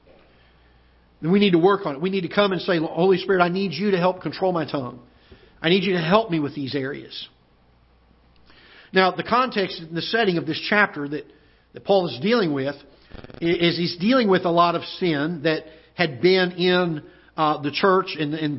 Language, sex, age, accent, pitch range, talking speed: English, male, 50-69, American, 150-200 Hz, 205 wpm